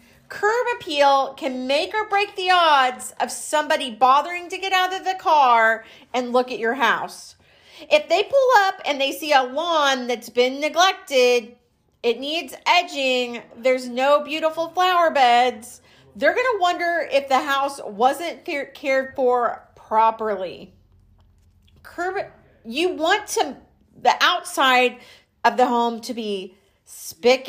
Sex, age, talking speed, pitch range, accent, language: female, 40-59, 140 wpm, 240-315 Hz, American, English